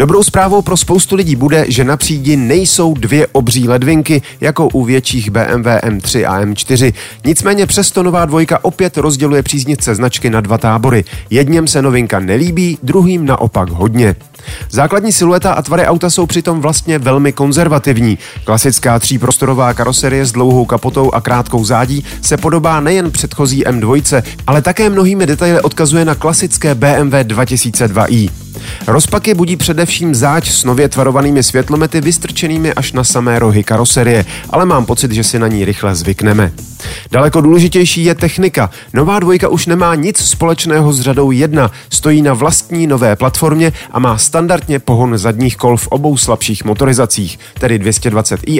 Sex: male